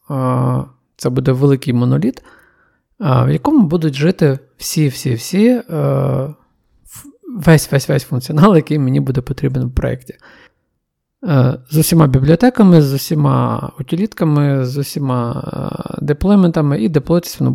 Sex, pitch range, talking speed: male, 130-175 Hz, 100 wpm